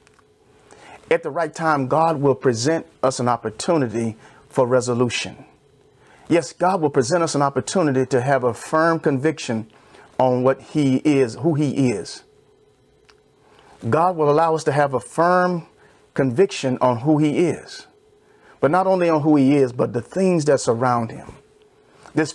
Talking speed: 155 wpm